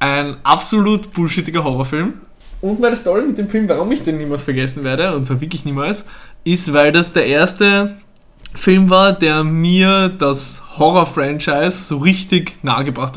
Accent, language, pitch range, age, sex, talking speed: German, German, 145-185 Hz, 20-39, male, 160 wpm